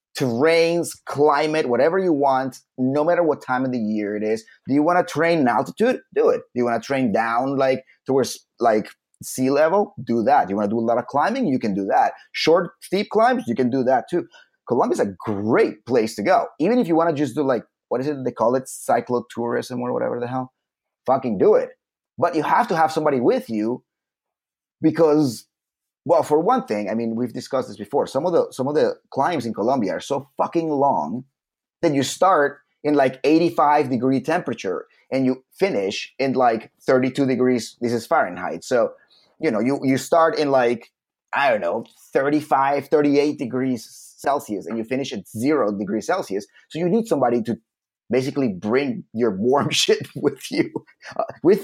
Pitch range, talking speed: 125-165 Hz, 200 wpm